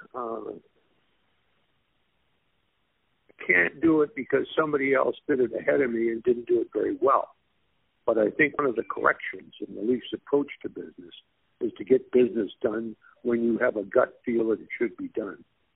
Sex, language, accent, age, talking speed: male, English, American, 60-79, 180 wpm